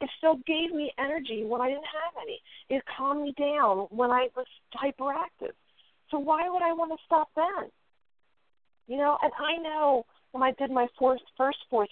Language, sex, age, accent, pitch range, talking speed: English, female, 50-69, American, 240-305 Hz, 190 wpm